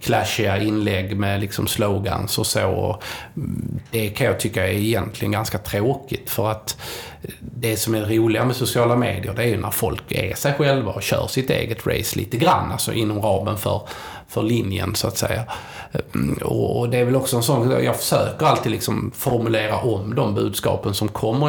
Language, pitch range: Swedish, 105-120 Hz